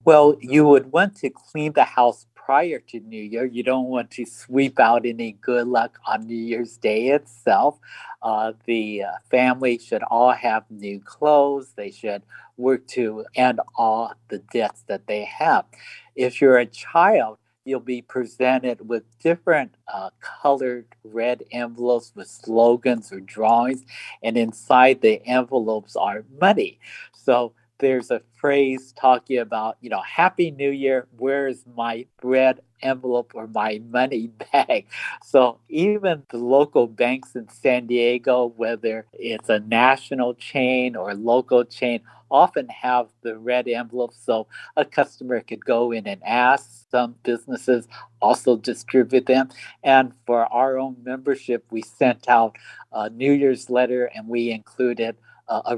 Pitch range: 115-130 Hz